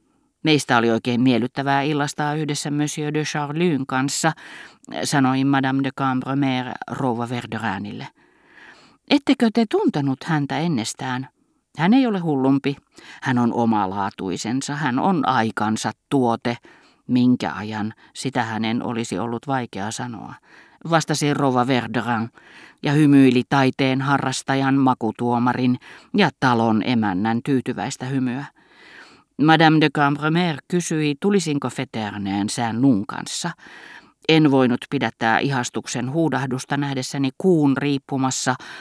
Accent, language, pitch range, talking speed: native, Finnish, 120-150 Hz, 105 wpm